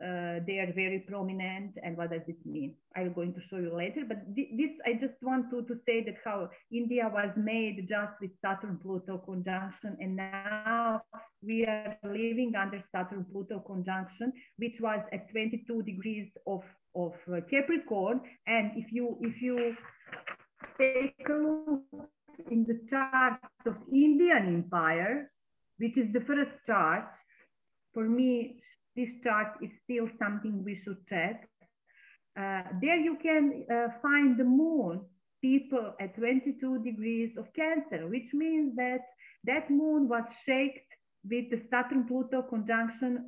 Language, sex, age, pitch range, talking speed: English, female, 40-59, 195-255 Hz, 145 wpm